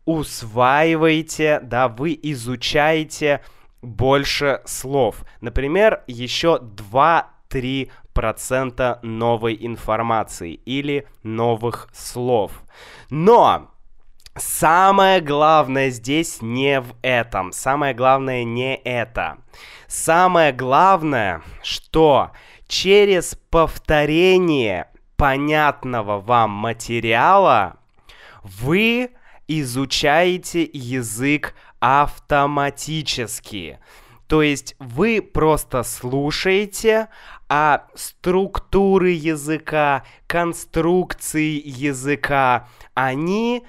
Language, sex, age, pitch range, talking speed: Russian, male, 20-39, 120-160 Hz, 65 wpm